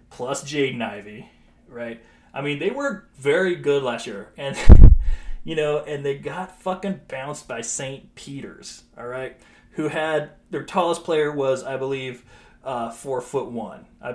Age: 30-49